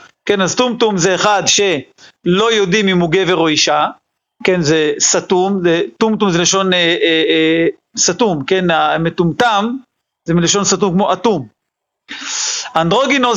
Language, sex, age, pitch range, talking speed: Hebrew, male, 40-59, 180-230 Hz, 140 wpm